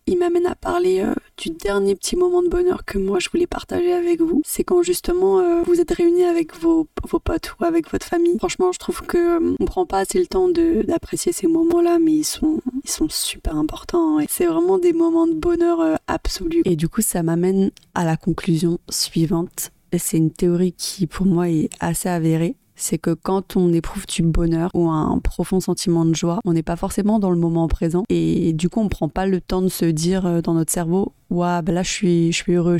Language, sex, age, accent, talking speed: French, female, 30-49, French, 225 wpm